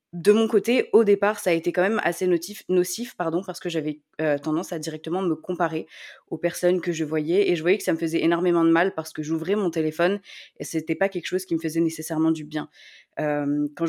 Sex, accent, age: female, French, 20-39